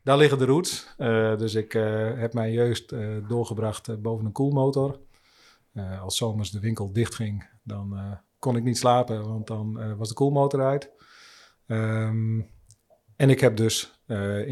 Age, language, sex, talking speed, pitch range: 40-59, Dutch, male, 170 wpm, 100-115 Hz